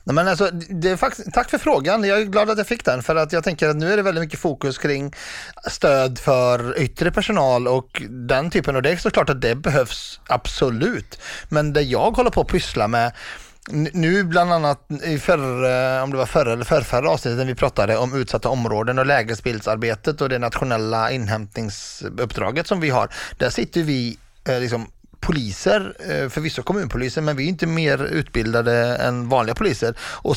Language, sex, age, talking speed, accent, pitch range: Swedish, male, 30-49, 185 wpm, native, 125-165 Hz